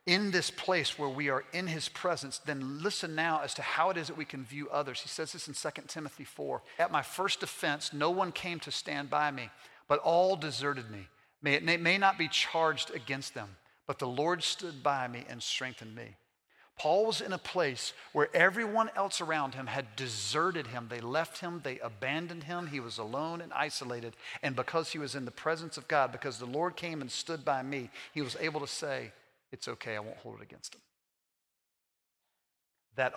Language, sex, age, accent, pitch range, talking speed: English, male, 50-69, American, 140-170 Hz, 210 wpm